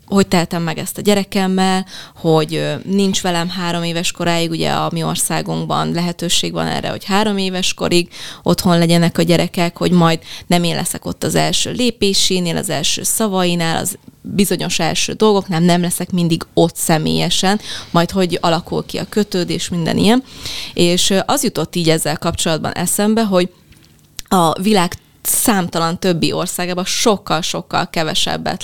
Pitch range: 165-195 Hz